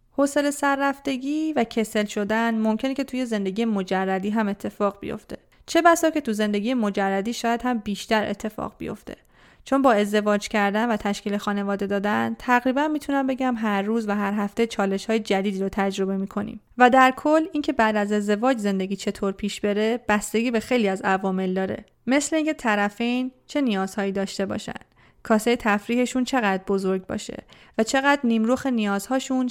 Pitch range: 205-255 Hz